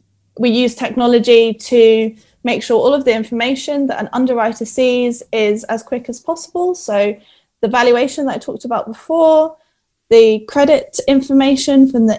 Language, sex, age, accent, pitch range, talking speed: Hebrew, female, 10-29, British, 215-255 Hz, 160 wpm